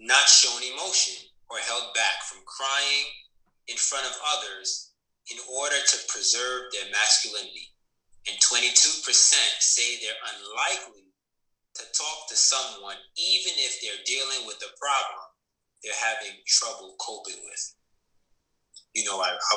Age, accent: 30-49, American